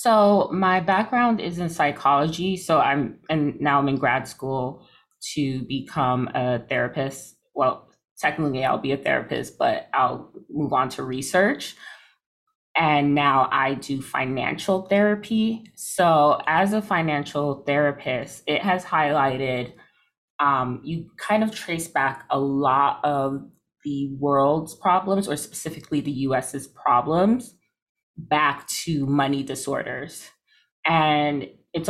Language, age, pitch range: English, 20-39, 135-165 Hz